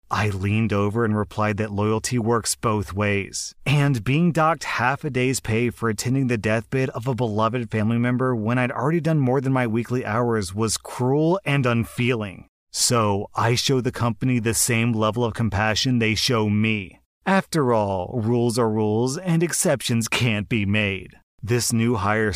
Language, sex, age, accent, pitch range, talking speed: English, male, 30-49, American, 105-125 Hz, 175 wpm